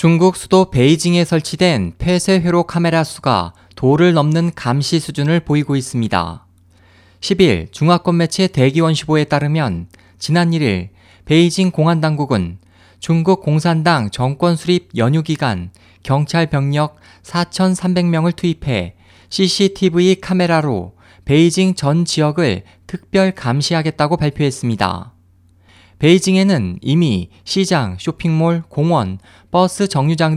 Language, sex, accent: Korean, male, native